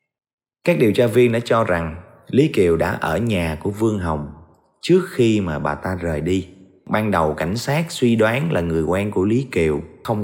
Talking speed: 205 wpm